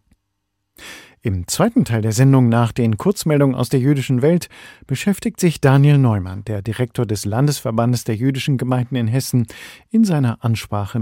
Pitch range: 110-135 Hz